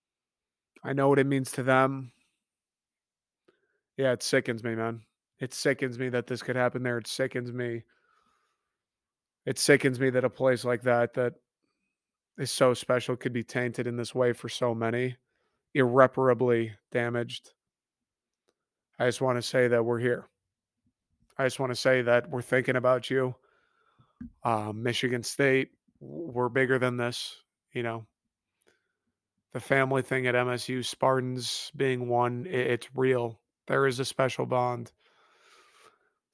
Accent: American